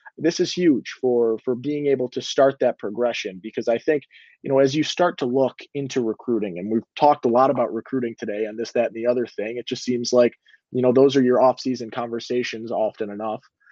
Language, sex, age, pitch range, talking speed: English, male, 20-39, 125-150 Hz, 230 wpm